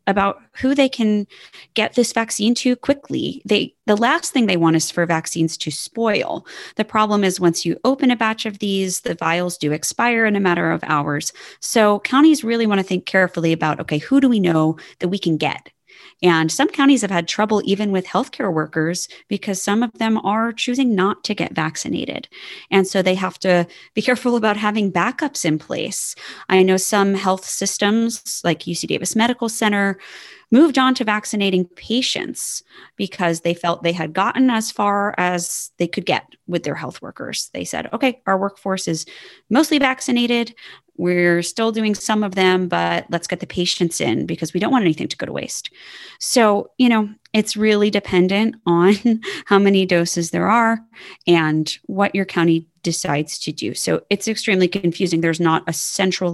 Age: 20-39